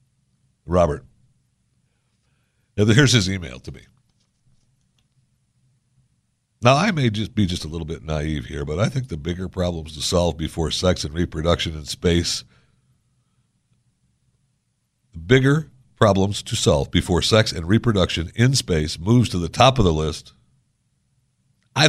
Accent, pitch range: American, 90-135 Hz